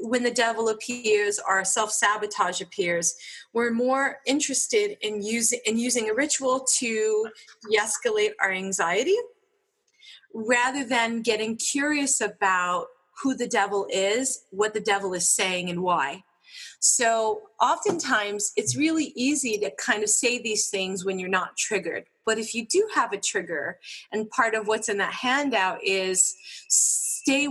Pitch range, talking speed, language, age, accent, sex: 210-260 Hz, 145 wpm, English, 30-49, American, female